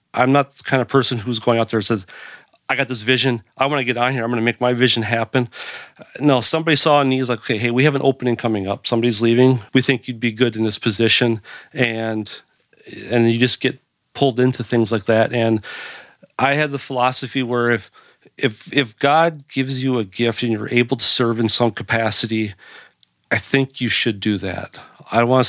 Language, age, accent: English, 40-59, American